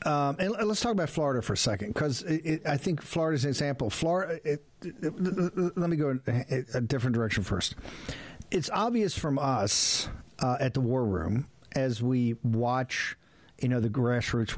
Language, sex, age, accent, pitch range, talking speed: English, male, 50-69, American, 115-145 Hz, 180 wpm